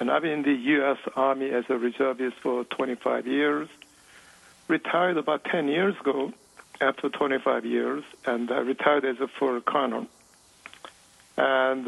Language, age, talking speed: English, 60-79, 145 wpm